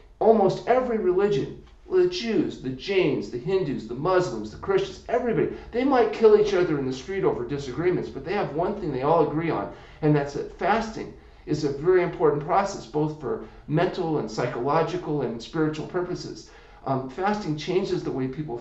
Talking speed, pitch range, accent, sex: 180 wpm, 135-180 Hz, American, male